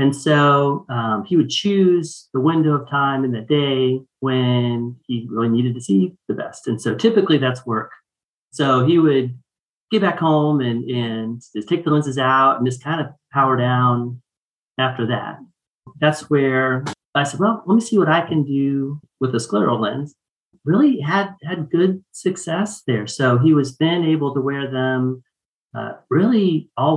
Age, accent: 40-59, American